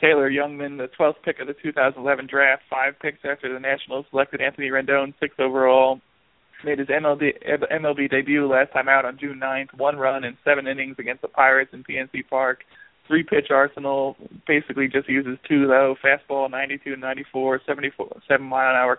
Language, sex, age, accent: English, male, 20-39, American